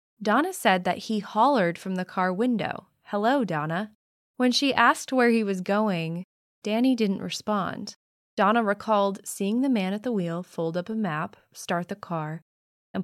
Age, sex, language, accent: 20-39, female, English, American